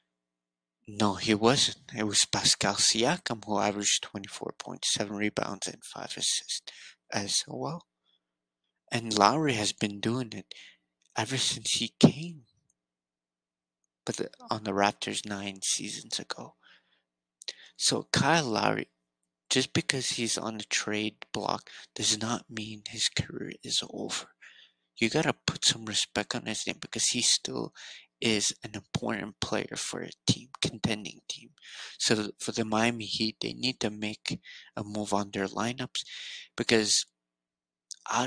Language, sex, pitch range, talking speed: English, male, 90-115 Hz, 135 wpm